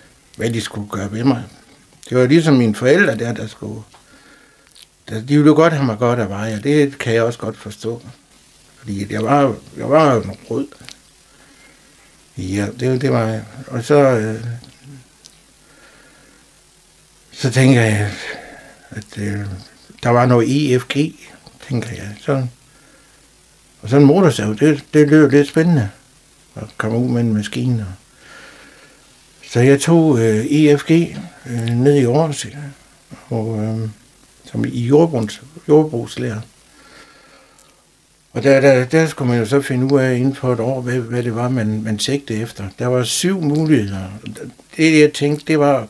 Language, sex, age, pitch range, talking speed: Danish, male, 60-79, 110-140 Hz, 150 wpm